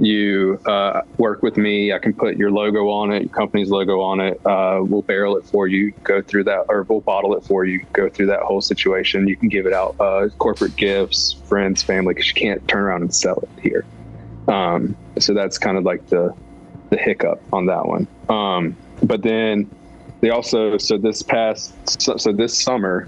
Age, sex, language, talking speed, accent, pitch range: 20-39, male, English, 210 wpm, American, 95-105 Hz